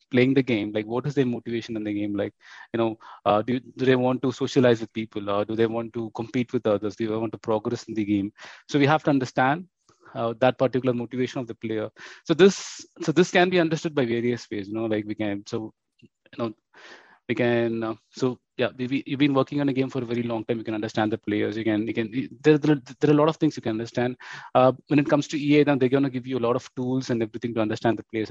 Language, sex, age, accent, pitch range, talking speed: English, male, 20-39, Indian, 115-145 Hz, 270 wpm